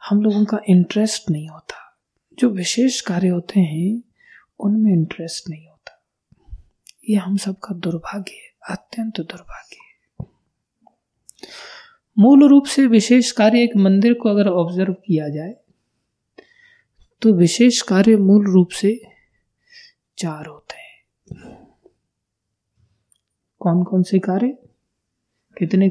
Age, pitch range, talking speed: 20-39, 175-250 Hz, 115 wpm